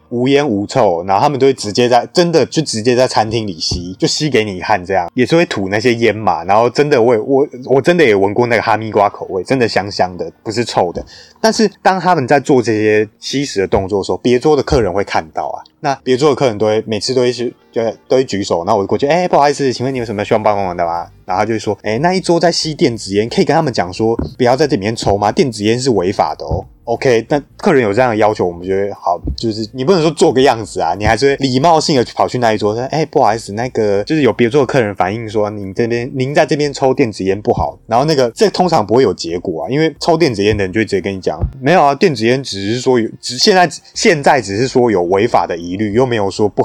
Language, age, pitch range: Chinese, 20-39, 105-140 Hz